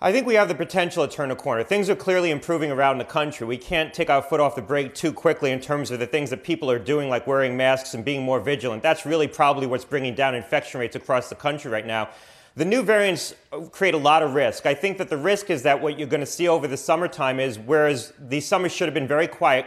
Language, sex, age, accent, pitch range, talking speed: English, male, 30-49, American, 135-165 Hz, 270 wpm